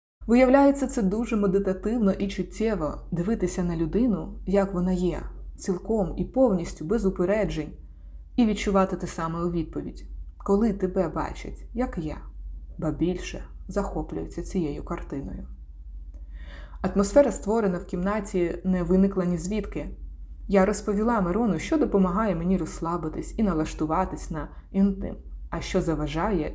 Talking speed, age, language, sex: 125 wpm, 20-39, Ukrainian, female